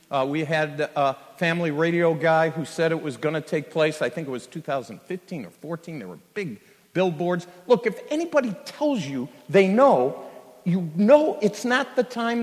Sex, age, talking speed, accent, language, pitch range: male, 50-69, 190 wpm, American, English, 145-230 Hz